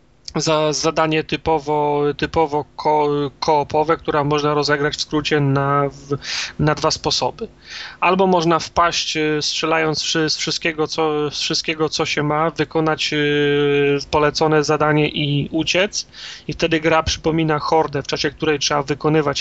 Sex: male